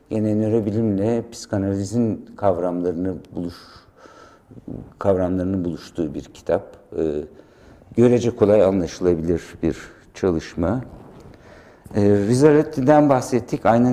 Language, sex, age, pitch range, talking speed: English, male, 60-79, 95-115 Hz, 80 wpm